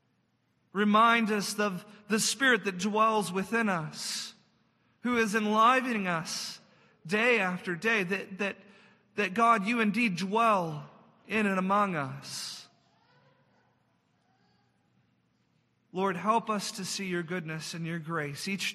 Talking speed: 120 wpm